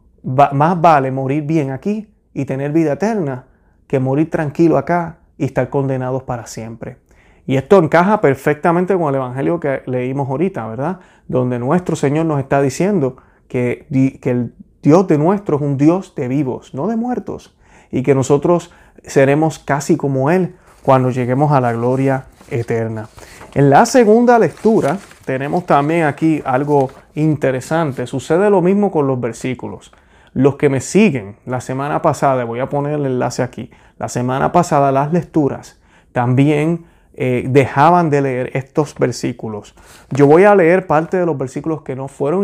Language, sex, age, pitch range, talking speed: Spanish, male, 30-49, 130-160 Hz, 160 wpm